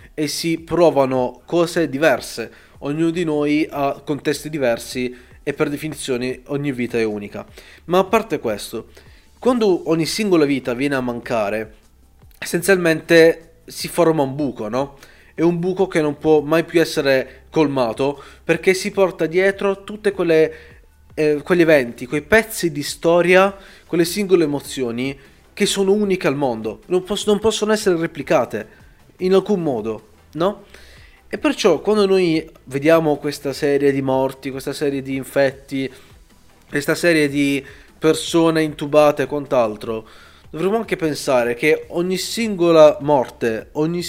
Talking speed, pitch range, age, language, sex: 140 wpm, 135-185 Hz, 30-49, Italian, male